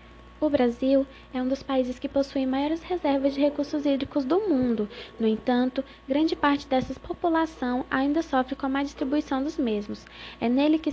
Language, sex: Portuguese, female